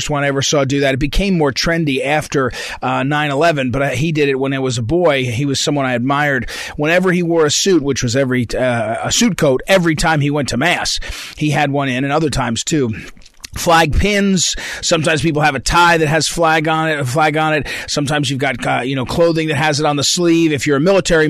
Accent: American